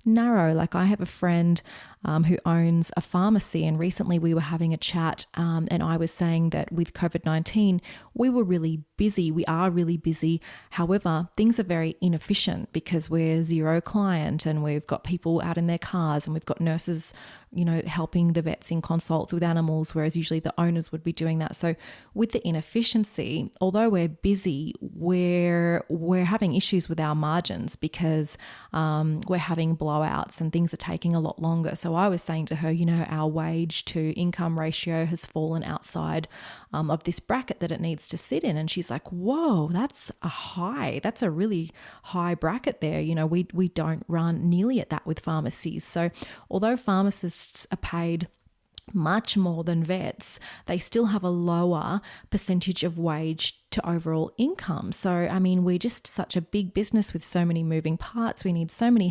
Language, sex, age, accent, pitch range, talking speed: English, female, 30-49, Australian, 160-185 Hz, 190 wpm